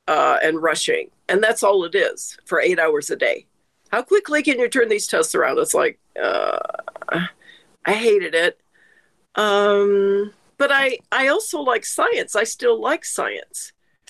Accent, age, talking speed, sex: American, 50-69, 170 wpm, female